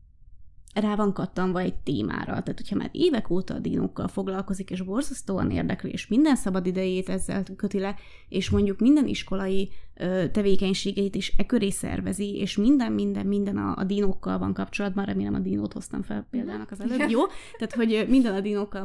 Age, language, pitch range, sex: 20-39, Hungarian, 180-200 Hz, female